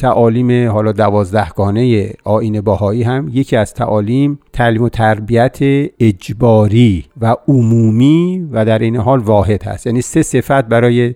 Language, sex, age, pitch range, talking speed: Persian, male, 50-69, 110-135 Hz, 140 wpm